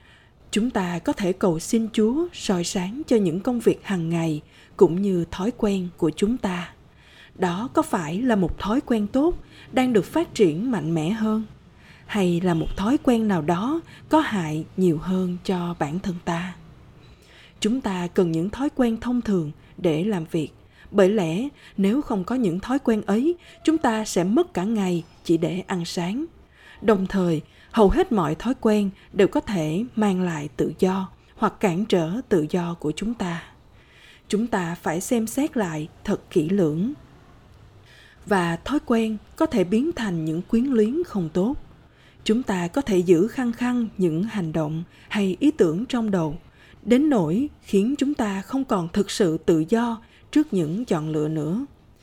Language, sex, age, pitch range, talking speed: Vietnamese, female, 20-39, 175-235 Hz, 180 wpm